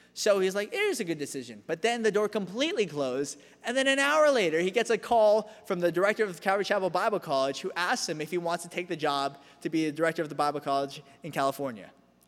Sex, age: male, 20-39